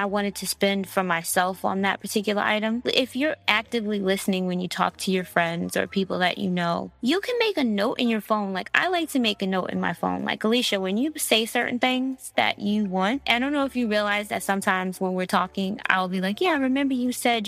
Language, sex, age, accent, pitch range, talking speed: English, female, 20-39, American, 190-250 Hz, 245 wpm